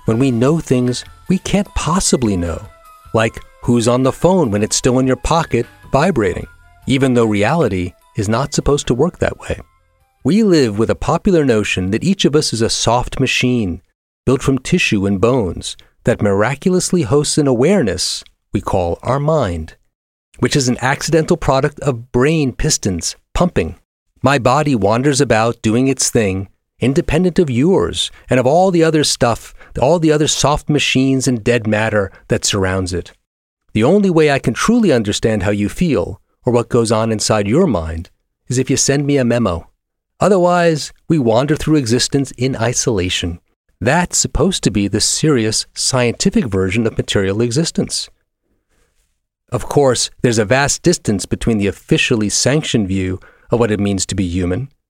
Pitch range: 105-150 Hz